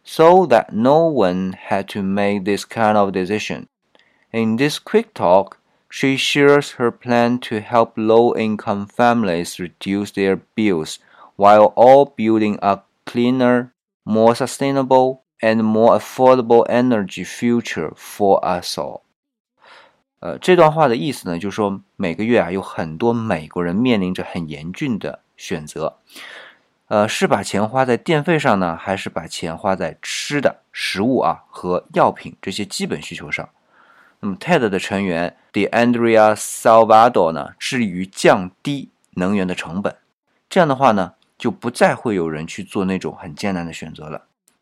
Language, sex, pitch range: Chinese, male, 95-125 Hz